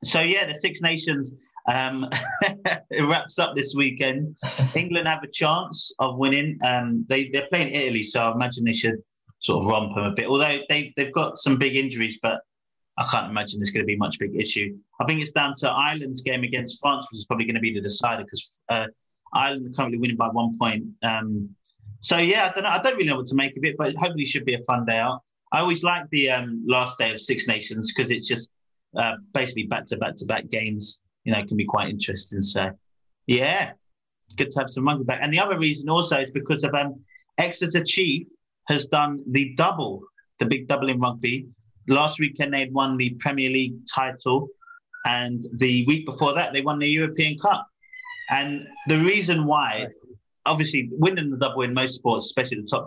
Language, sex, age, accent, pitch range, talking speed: English, male, 30-49, British, 120-155 Hz, 215 wpm